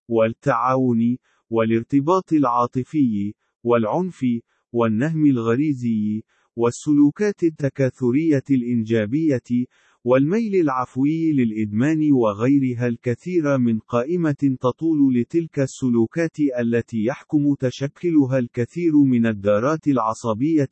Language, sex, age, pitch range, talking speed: Arabic, male, 40-59, 120-150 Hz, 75 wpm